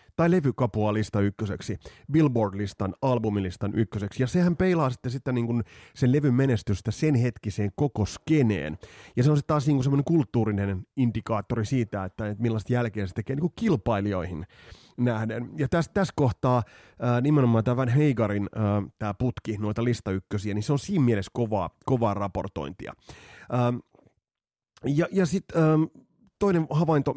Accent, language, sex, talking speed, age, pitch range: native, Finnish, male, 150 wpm, 30-49, 105-135 Hz